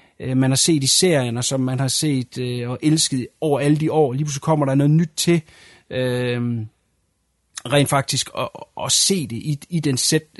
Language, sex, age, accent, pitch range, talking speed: Danish, male, 30-49, native, 130-155 Hz, 200 wpm